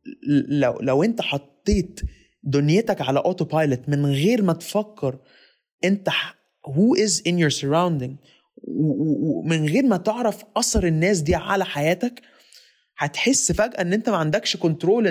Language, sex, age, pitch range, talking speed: Arabic, male, 20-39, 150-200 Hz, 130 wpm